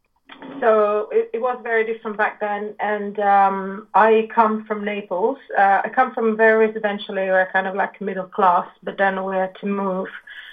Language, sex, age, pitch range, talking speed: English, female, 30-49, 185-210 Hz, 180 wpm